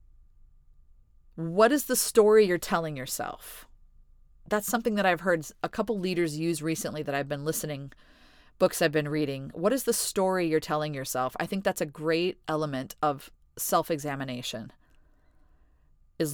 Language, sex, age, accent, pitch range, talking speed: English, female, 30-49, American, 140-180 Hz, 150 wpm